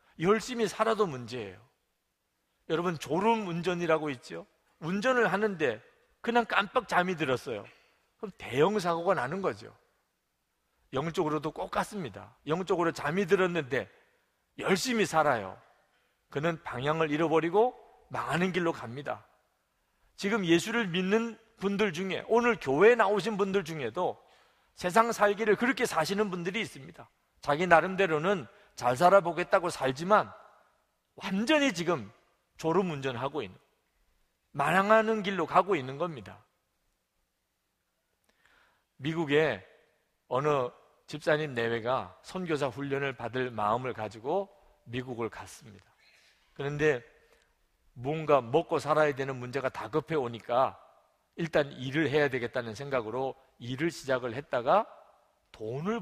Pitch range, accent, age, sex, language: 135-200 Hz, native, 40-59, male, Korean